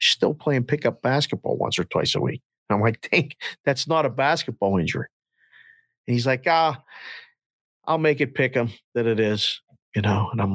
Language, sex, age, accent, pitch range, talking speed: English, male, 50-69, American, 115-145 Hz, 195 wpm